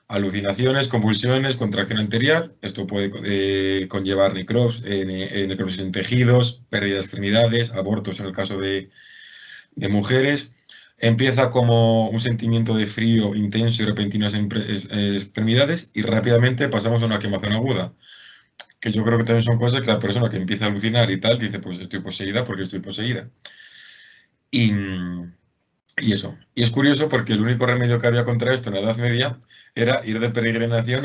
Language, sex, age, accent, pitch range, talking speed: Spanish, male, 30-49, Spanish, 100-120 Hz, 170 wpm